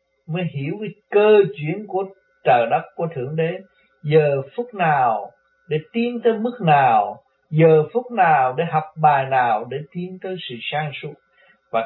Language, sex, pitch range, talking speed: Vietnamese, male, 135-195 Hz, 165 wpm